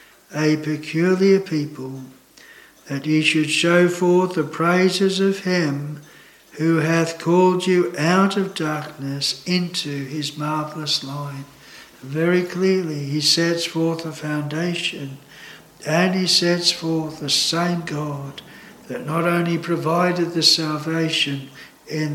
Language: English